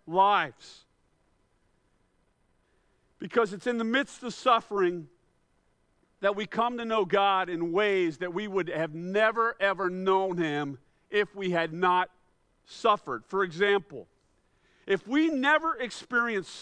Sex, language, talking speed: male, English, 125 wpm